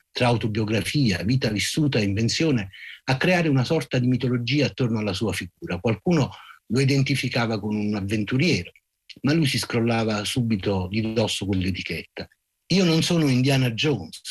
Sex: male